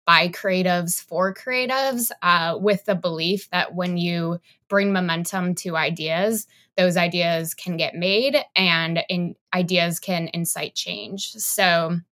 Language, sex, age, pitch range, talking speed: English, female, 20-39, 165-190 Hz, 135 wpm